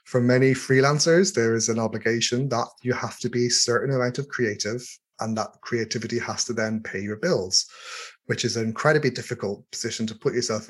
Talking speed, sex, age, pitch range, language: 195 wpm, male, 30-49, 110-125 Hz, English